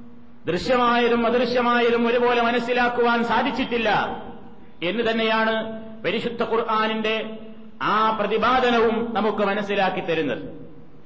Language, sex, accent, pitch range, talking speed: Malayalam, male, native, 220-245 Hz, 75 wpm